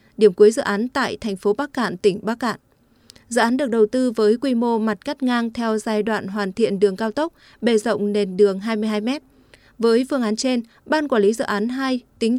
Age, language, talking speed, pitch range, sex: 20-39, Vietnamese, 230 wpm, 205-250 Hz, female